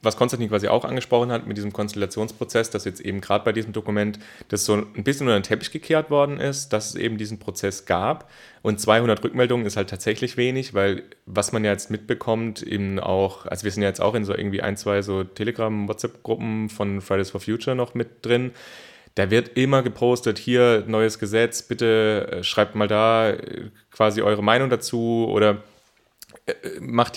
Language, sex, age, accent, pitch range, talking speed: German, male, 30-49, German, 105-120 Hz, 185 wpm